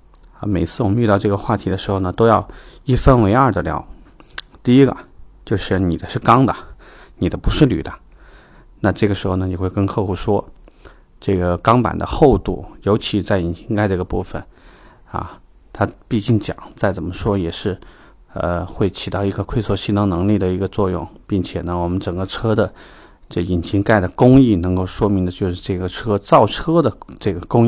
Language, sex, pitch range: Chinese, male, 95-110 Hz